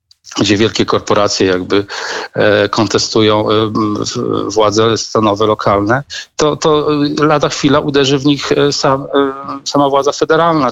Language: Polish